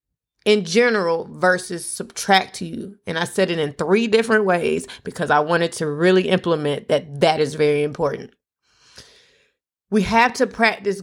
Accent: American